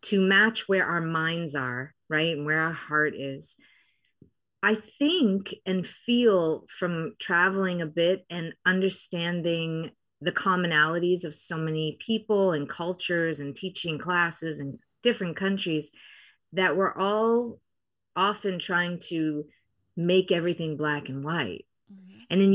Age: 30-49